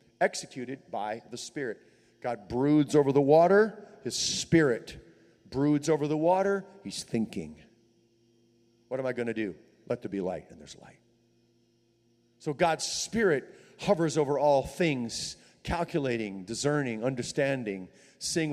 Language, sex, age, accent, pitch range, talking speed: English, male, 40-59, American, 115-150 Hz, 135 wpm